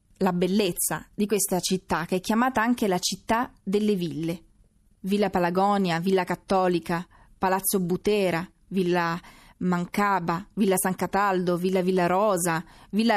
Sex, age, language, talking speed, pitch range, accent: female, 30-49, Italian, 130 wpm, 180-215 Hz, native